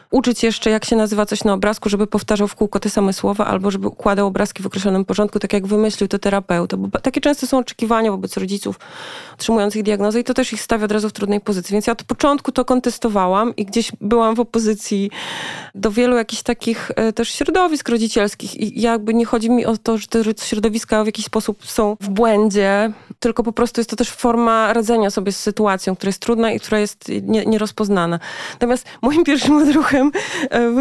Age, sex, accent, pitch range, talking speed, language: 20-39, female, native, 205-235 Hz, 205 wpm, Polish